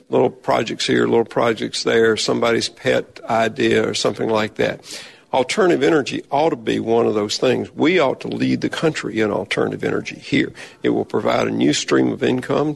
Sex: male